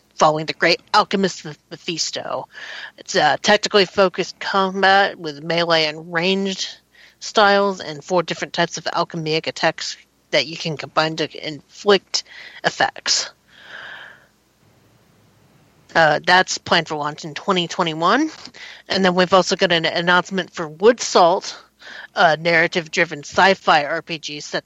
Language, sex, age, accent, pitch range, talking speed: English, female, 40-59, American, 160-190 Hz, 130 wpm